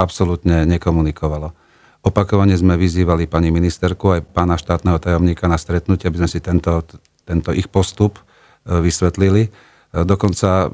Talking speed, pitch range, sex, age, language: 125 wpm, 85-95 Hz, male, 40-59, Slovak